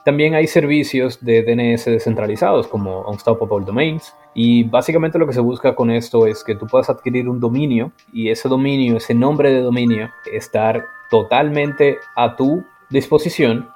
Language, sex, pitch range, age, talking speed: Spanish, male, 115-145 Hz, 20-39, 155 wpm